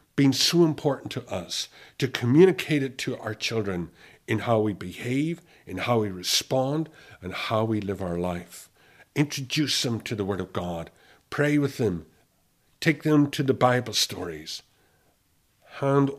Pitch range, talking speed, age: 105-140 Hz, 155 wpm, 60-79